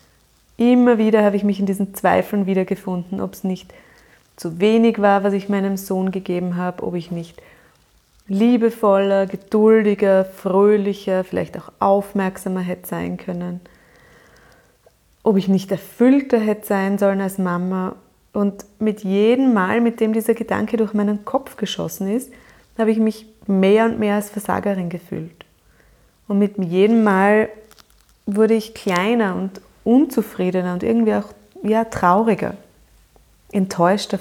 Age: 20-39